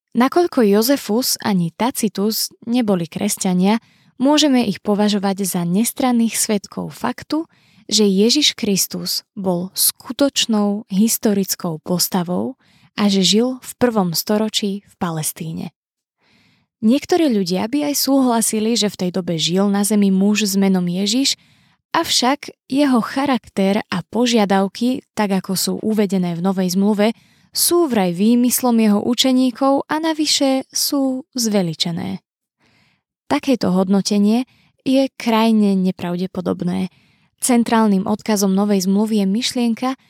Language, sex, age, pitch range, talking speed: Slovak, female, 20-39, 195-245 Hz, 115 wpm